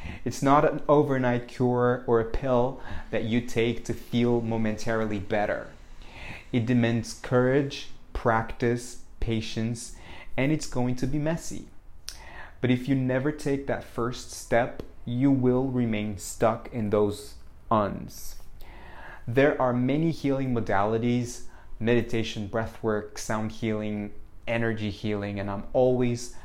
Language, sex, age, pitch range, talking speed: English, male, 30-49, 105-130 Hz, 125 wpm